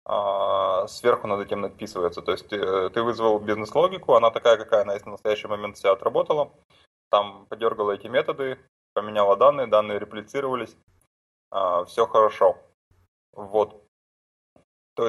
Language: Russian